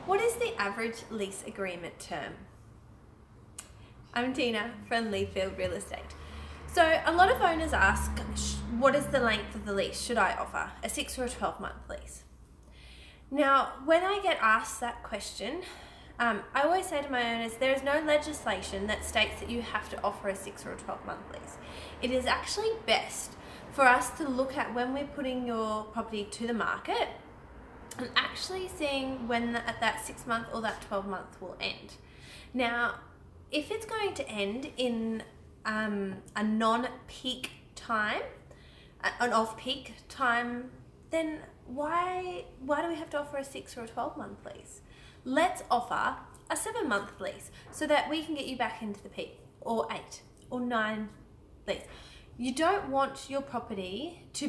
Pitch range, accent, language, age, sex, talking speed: 210-290 Hz, Australian, English, 20-39, female, 170 wpm